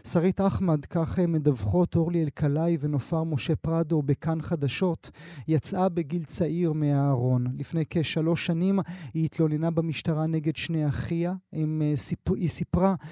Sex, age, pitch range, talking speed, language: male, 30-49, 150-170 Hz, 120 wpm, Hebrew